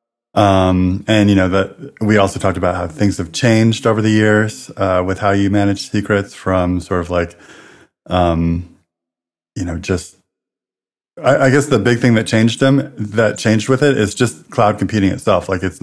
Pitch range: 90-110 Hz